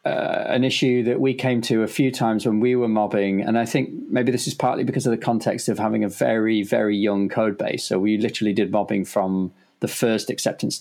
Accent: British